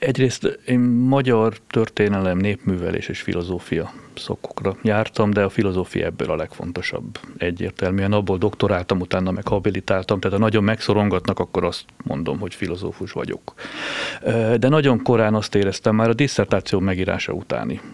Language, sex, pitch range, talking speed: Hungarian, male, 95-115 Hz, 135 wpm